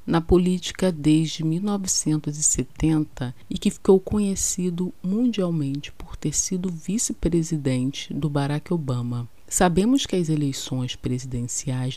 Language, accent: Portuguese, Brazilian